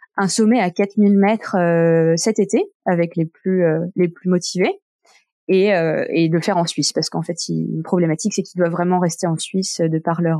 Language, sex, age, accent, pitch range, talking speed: French, female, 20-39, French, 170-205 Hz, 225 wpm